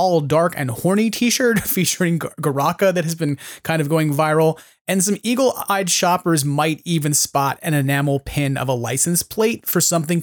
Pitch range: 140-180 Hz